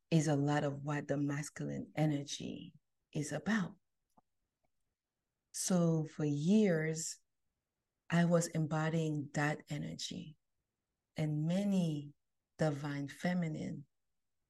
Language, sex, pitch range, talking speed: English, female, 145-170 Hz, 90 wpm